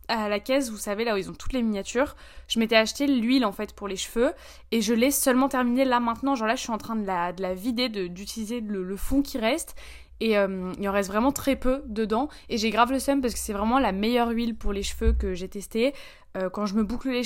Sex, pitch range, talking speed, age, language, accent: female, 210-245 Hz, 265 wpm, 20-39, French, French